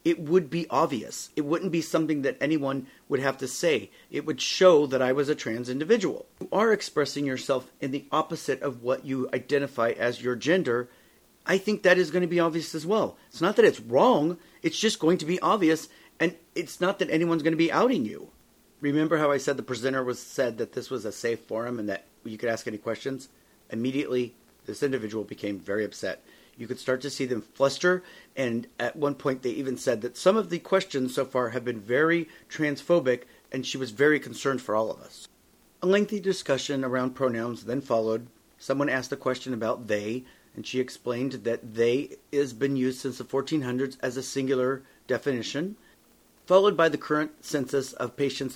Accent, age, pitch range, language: American, 40-59, 125-160 Hz, English